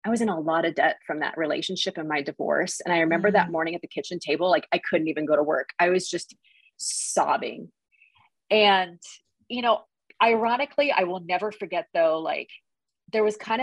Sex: female